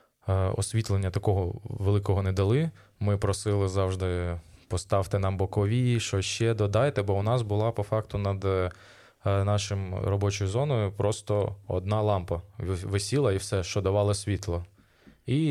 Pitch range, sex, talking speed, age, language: 95-110 Hz, male, 130 wpm, 20-39, Ukrainian